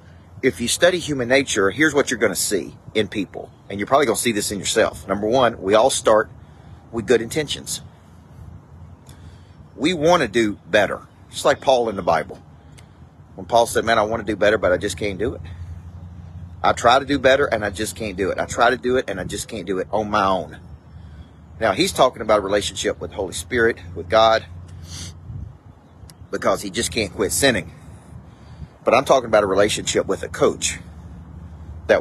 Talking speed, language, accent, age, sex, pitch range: 205 wpm, English, American, 40-59, male, 85-110 Hz